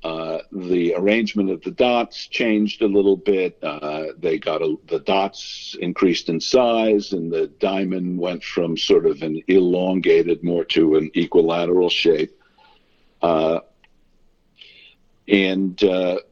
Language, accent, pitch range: English, American, 90-120 Hz